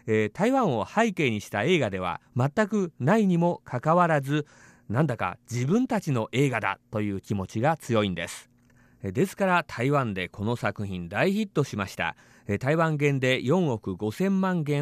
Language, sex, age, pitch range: Japanese, male, 40-59, 105-155 Hz